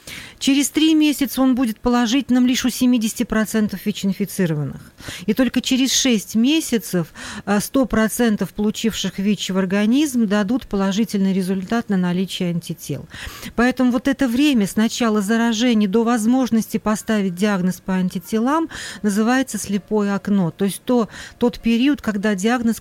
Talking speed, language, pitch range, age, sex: 125 wpm, Russian, 195-235 Hz, 40-59, female